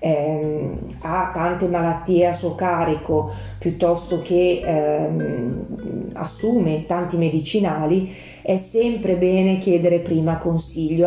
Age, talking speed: 30-49, 100 wpm